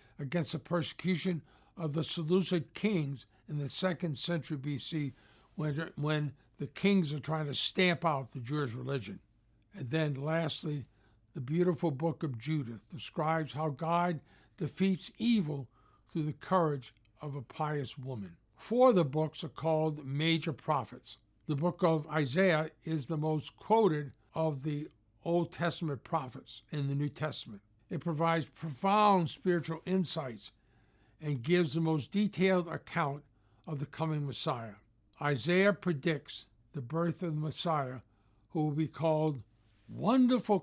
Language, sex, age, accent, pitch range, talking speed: English, male, 60-79, American, 130-170 Hz, 140 wpm